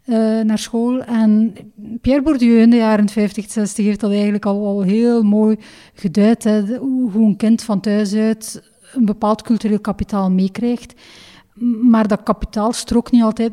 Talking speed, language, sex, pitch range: 175 wpm, Dutch, female, 200-225 Hz